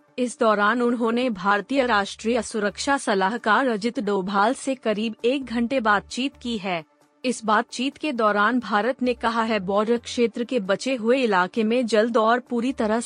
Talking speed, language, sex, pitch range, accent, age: 160 wpm, Hindi, female, 205-250 Hz, native, 30-49